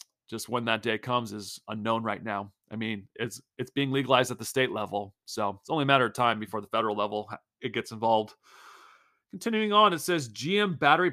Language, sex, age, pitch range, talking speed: English, male, 30-49, 115-145 Hz, 210 wpm